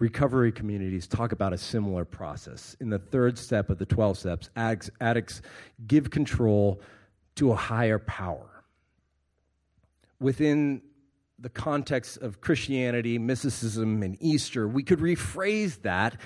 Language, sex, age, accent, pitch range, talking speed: English, male, 40-59, American, 95-130 Hz, 125 wpm